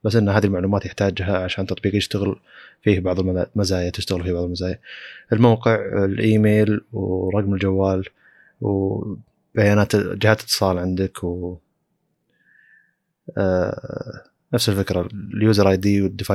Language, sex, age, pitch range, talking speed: Arabic, male, 20-39, 95-110 Hz, 115 wpm